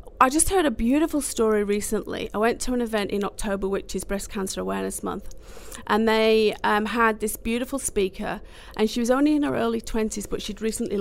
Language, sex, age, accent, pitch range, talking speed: English, female, 40-59, British, 200-240 Hz, 205 wpm